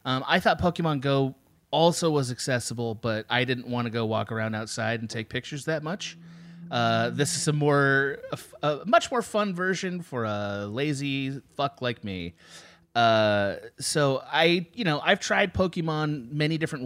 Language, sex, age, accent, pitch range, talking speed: English, male, 30-49, American, 120-160 Hz, 180 wpm